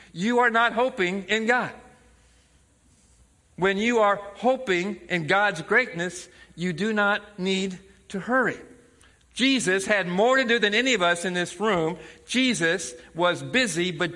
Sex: male